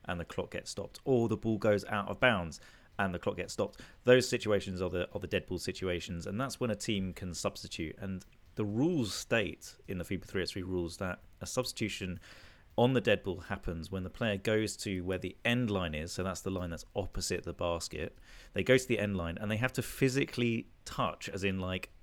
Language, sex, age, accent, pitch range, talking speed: English, male, 30-49, British, 90-115 Hz, 225 wpm